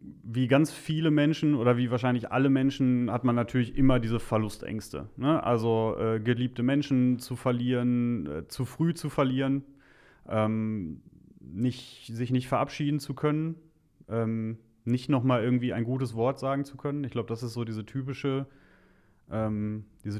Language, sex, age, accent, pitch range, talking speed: German, male, 30-49, German, 110-130 Hz, 145 wpm